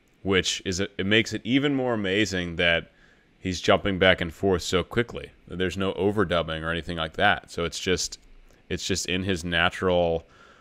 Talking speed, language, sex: 180 wpm, English, male